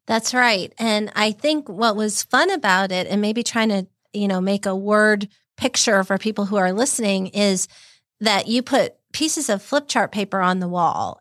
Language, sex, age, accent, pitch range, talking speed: English, female, 40-59, American, 190-220 Hz, 200 wpm